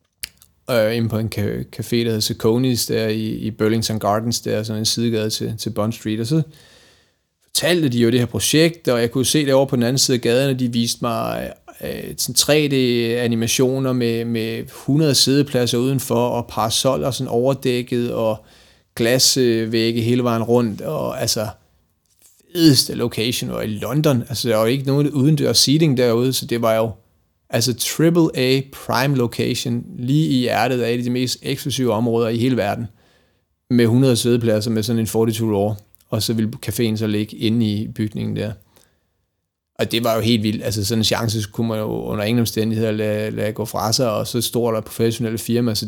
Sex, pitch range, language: male, 110-125 Hz, Danish